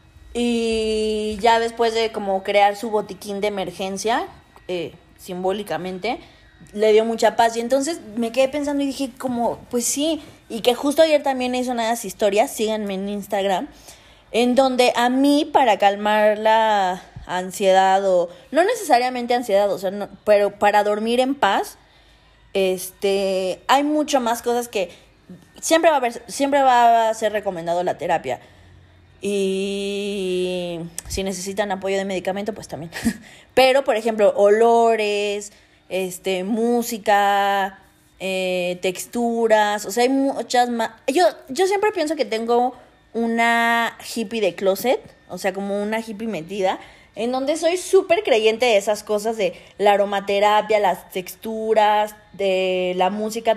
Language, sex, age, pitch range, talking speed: Spanish, female, 20-39, 195-245 Hz, 140 wpm